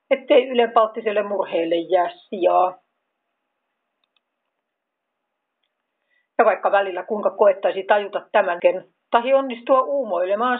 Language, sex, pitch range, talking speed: Finnish, female, 190-285 Hz, 85 wpm